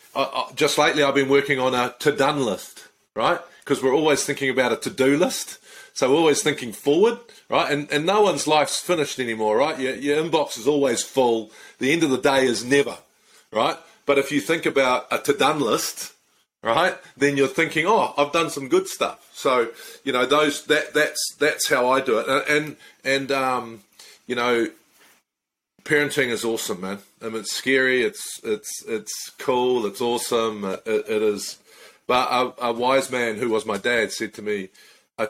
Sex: male